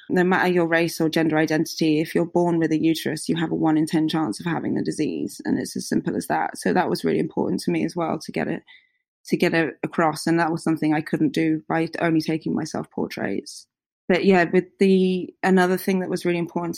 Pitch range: 160-180 Hz